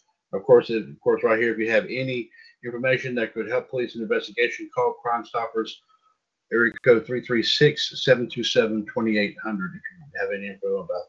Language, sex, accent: English, male, American